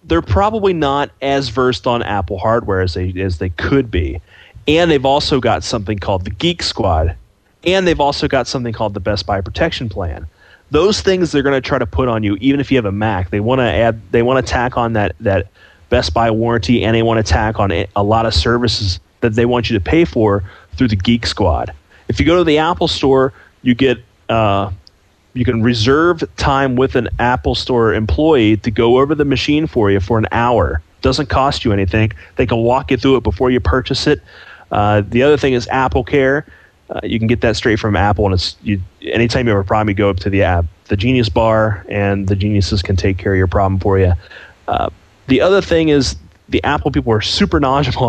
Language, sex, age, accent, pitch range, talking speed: English, male, 30-49, American, 100-130 Hz, 220 wpm